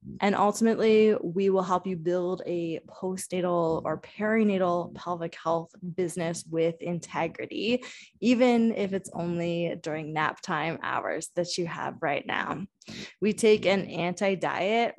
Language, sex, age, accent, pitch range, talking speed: English, female, 20-39, American, 175-210 Hz, 130 wpm